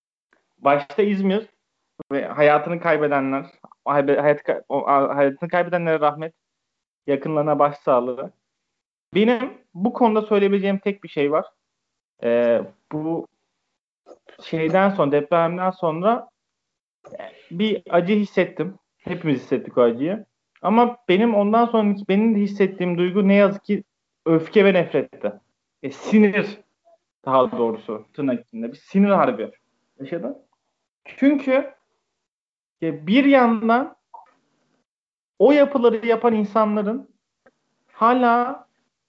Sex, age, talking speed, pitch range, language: male, 30-49, 100 wpm, 160-225 Hz, Turkish